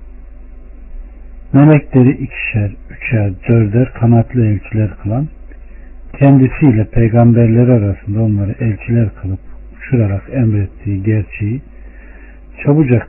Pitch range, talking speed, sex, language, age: 100-135 Hz, 80 wpm, male, Turkish, 60-79